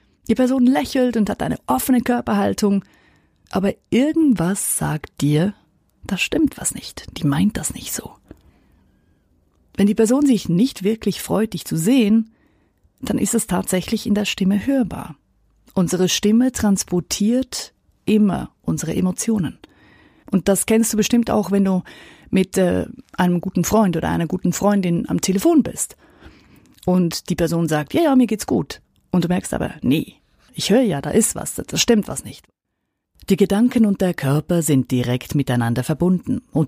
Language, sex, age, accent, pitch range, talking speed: German, female, 30-49, German, 150-220 Hz, 160 wpm